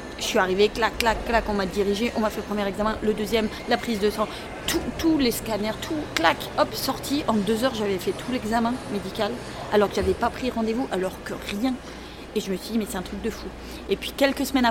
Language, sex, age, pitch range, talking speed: French, female, 30-49, 200-250 Hz, 255 wpm